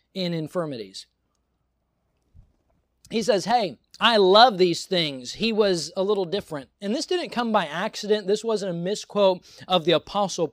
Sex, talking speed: male, 155 wpm